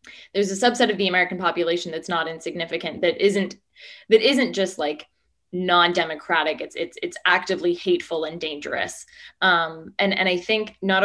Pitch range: 170-210 Hz